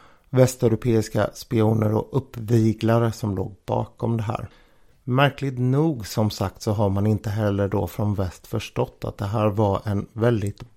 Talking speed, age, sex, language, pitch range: 155 wpm, 50-69, male, Swedish, 100-120 Hz